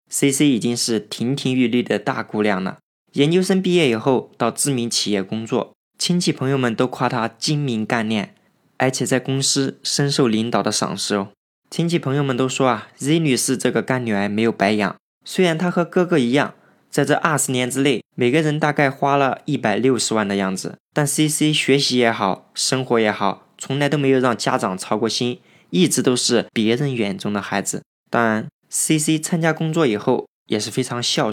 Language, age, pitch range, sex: Chinese, 20-39, 110-145 Hz, male